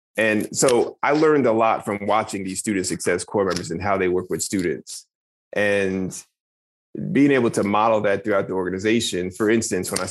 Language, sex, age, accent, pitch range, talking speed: English, male, 30-49, American, 95-110 Hz, 190 wpm